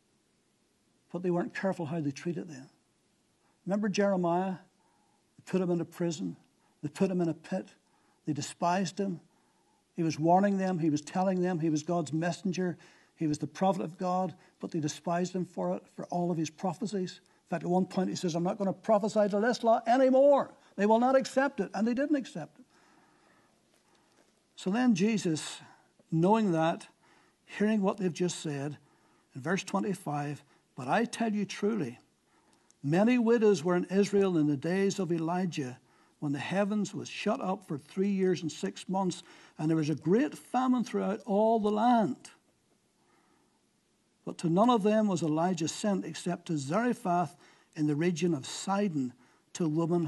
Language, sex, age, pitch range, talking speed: English, male, 60-79, 160-200 Hz, 180 wpm